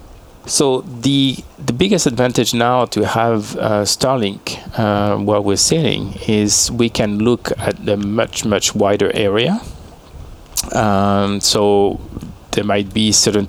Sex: male